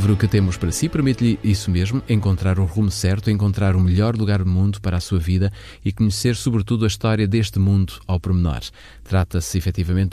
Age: 20-39